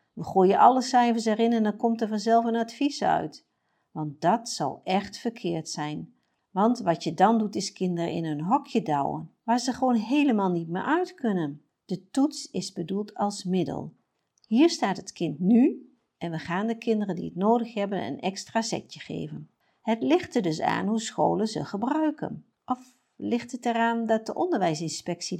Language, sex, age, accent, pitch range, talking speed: Dutch, female, 50-69, Dutch, 170-230 Hz, 185 wpm